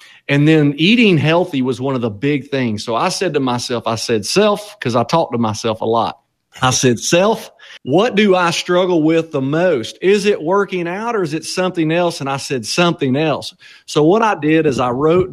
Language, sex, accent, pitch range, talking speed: English, male, American, 125-170 Hz, 220 wpm